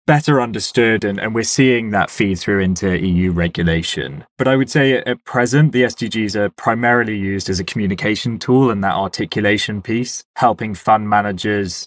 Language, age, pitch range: English, 20-39, 95-125 Hz